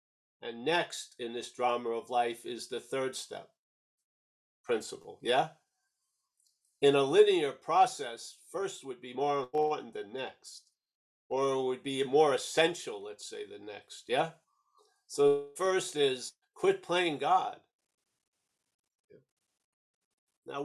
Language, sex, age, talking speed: English, male, 50-69, 120 wpm